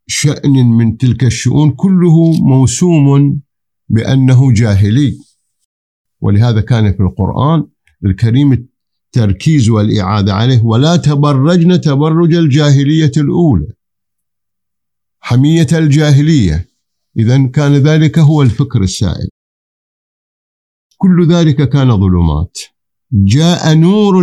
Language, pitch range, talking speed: Arabic, 100-145 Hz, 85 wpm